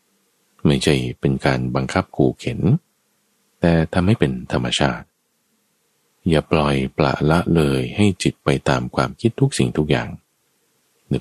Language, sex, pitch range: Thai, male, 65-90 Hz